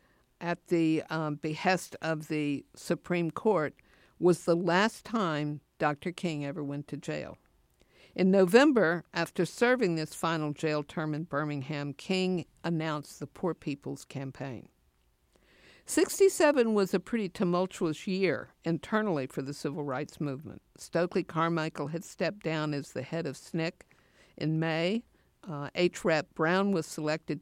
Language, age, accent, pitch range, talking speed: English, 50-69, American, 150-180 Hz, 140 wpm